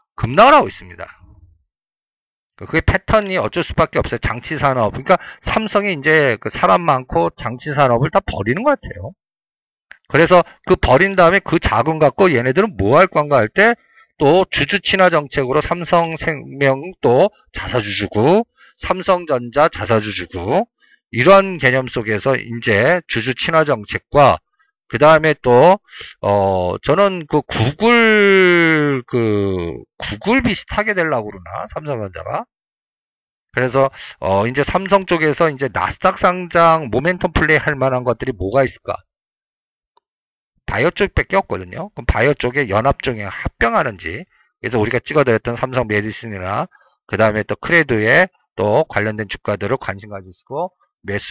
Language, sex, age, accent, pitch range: Korean, male, 50-69, native, 110-170 Hz